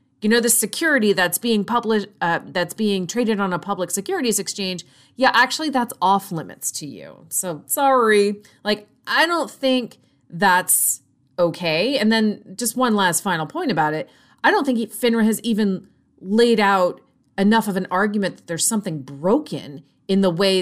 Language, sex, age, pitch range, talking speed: English, female, 30-49, 170-235 Hz, 170 wpm